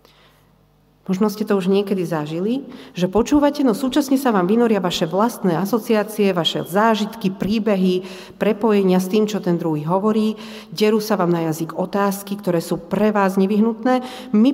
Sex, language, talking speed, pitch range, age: female, Slovak, 155 wpm, 180-230 Hz, 40-59